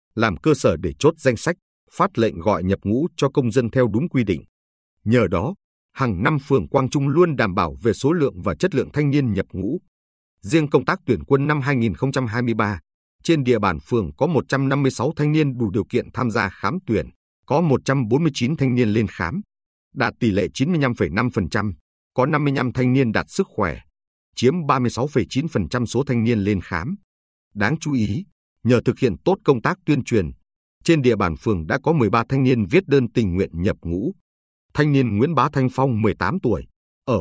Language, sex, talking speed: Vietnamese, male, 195 wpm